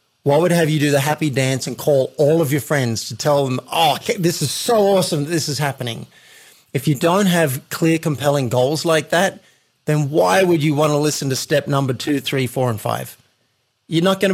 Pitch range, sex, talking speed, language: 130-160 Hz, male, 220 wpm, English